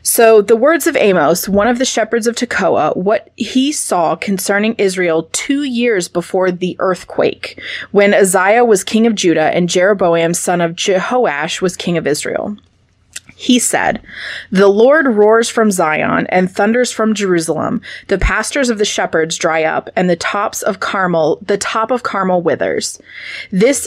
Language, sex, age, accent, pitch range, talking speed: English, female, 30-49, American, 180-230 Hz, 165 wpm